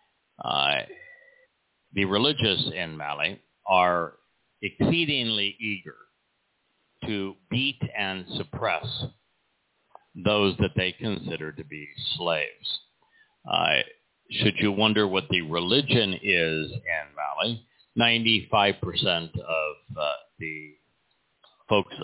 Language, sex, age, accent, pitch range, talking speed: English, male, 60-79, American, 95-140 Hz, 95 wpm